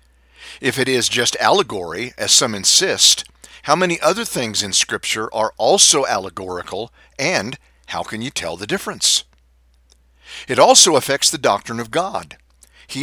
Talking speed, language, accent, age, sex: 145 wpm, English, American, 50-69, male